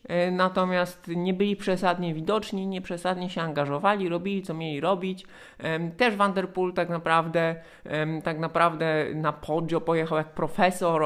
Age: 20-39